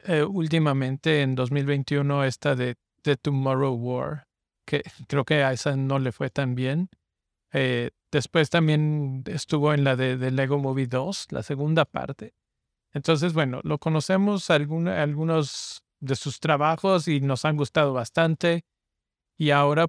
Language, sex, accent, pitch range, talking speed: Spanish, male, Mexican, 135-160 Hz, 145 wpm